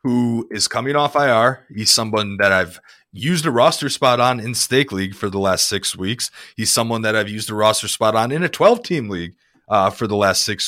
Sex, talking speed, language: male, 230 wpm, English